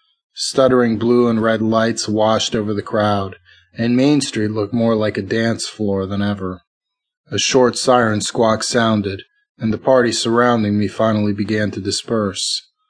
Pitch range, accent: 105-120 Hz, American